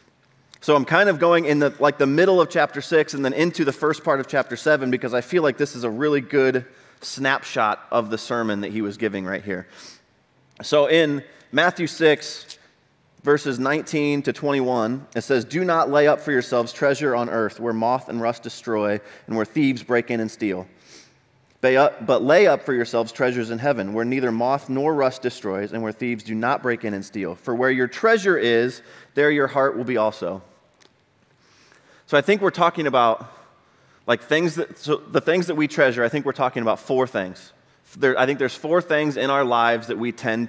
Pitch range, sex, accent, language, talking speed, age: 105-145 Hz, male, American, English, 205 wpm, 30-49